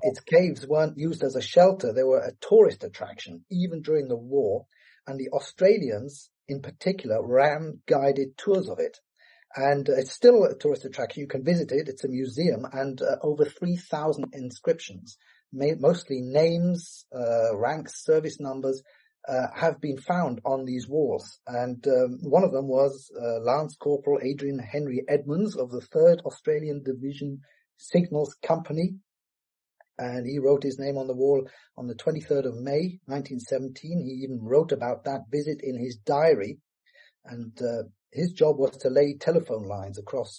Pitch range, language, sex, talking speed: 135-170 Hz, English, male, 165 wpm